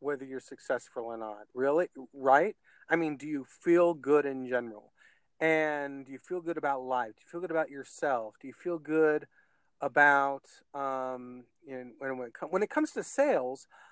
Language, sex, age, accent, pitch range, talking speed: English, male, 40-59, American, 135-180 Hz, 175 wpm